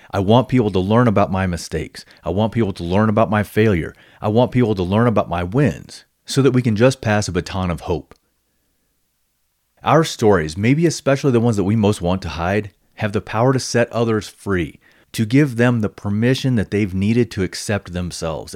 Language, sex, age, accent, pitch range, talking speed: English, male, 30-49, American, 95-115 Hz, 205 wpm